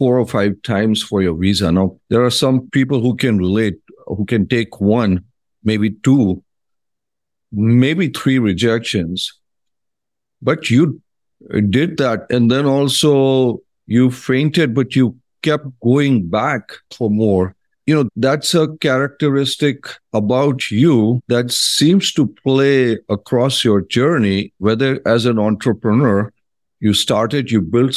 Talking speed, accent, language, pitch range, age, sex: 135 wpm, Indian, English, 110-145 Hz, 50-69, male